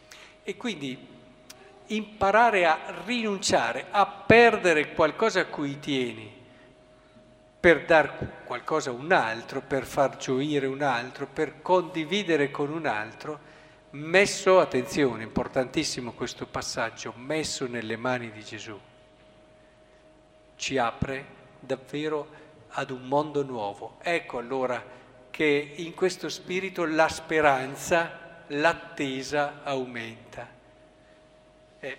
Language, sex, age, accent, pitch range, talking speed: Italian, male, 50-69, native, 125-160 Hz, 105 wpm